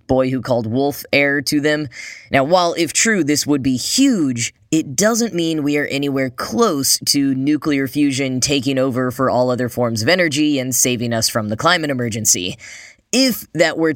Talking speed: 185 wpm